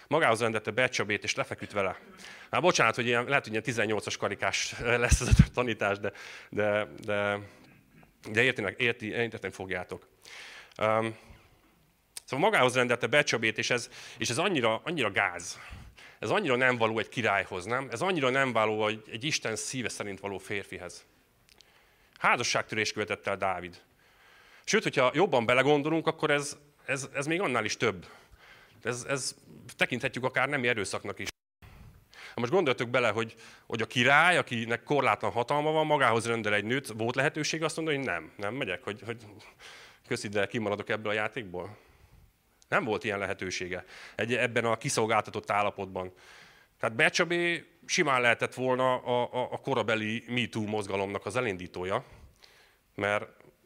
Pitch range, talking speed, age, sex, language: 105-135 Hz, 150 wpm, 30-49, male, Hungarian